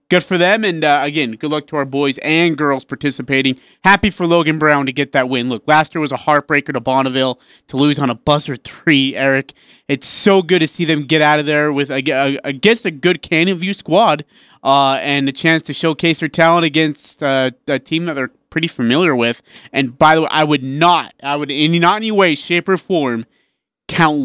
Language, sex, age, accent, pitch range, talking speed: English, male, 30-49, American, 135-160 Hz, 225 wpm